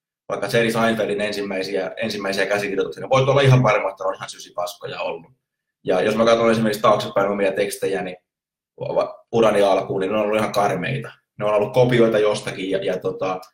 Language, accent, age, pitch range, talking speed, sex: Finnish, native, 20-39, 100-130 Hz, 180 wpm, male